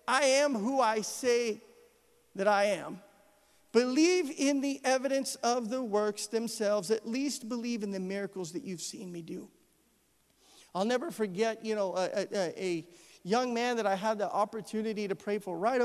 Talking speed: 175 wpm